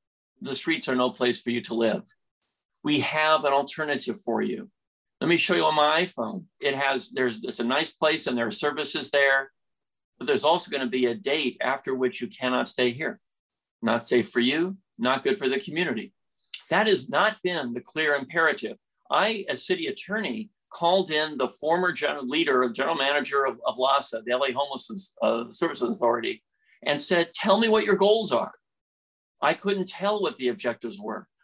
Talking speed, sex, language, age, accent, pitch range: 190 wpm, male, English, 50-69, American, 125-185 Hz